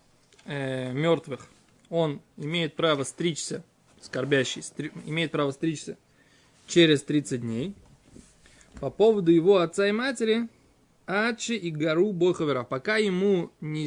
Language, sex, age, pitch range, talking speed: Russian, male, 20-39, 135-175 Hz, 110 wpm